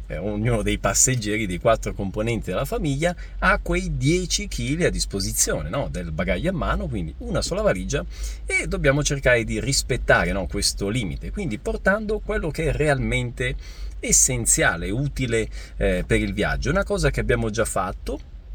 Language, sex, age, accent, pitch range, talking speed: Italian, male, 40-59, native, 90-125 Hz, 160 wpm